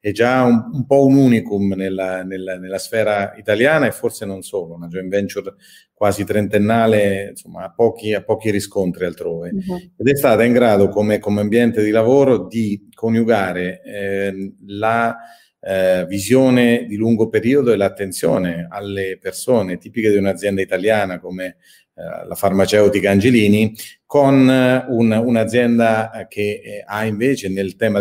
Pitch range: 100-120 Hz